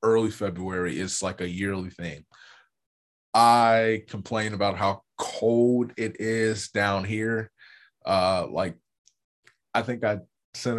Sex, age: male, 20-39